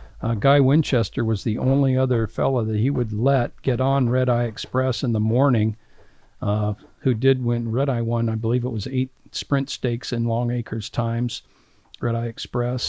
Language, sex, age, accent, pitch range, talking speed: English, male, 50-69, American, 110-130 Hz, 190 wpm